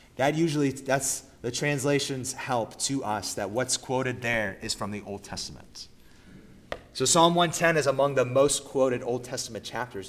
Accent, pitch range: American, 110-155 Hz